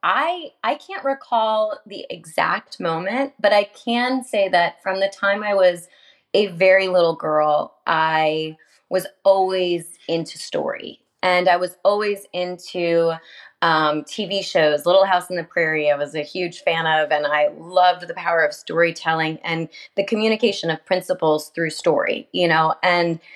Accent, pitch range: American, 160-190 Hz